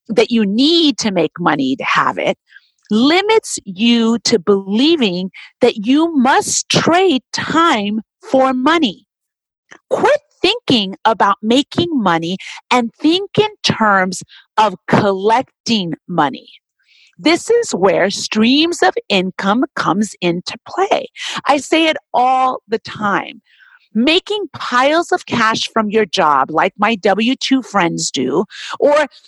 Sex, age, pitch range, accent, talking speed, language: female, 40-59, 205-320 Hz, American, 125 wpm, English